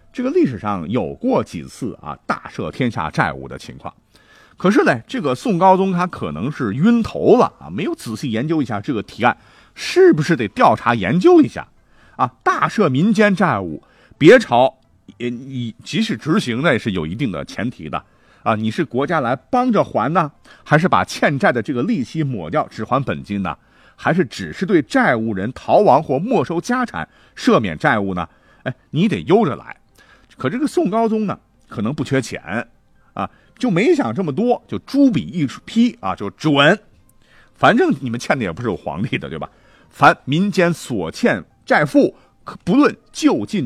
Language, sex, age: Chinese, male, 50-69